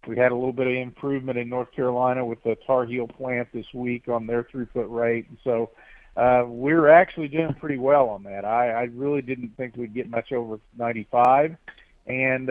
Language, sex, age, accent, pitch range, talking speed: English, male, 50-69, American, 115-135 Hz, 200 wpm